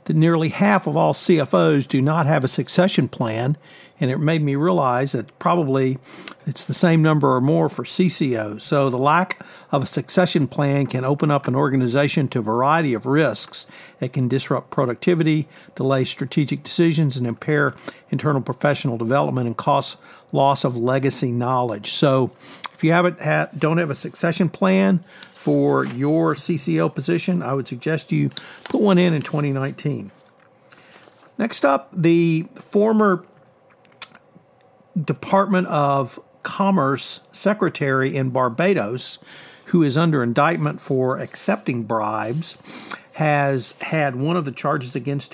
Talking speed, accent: 145 wpm, American